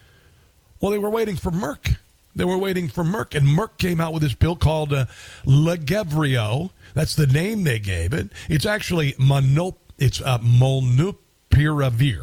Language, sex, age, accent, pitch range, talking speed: English, male, 50-69, American, 130-180 Hz, 160 wpm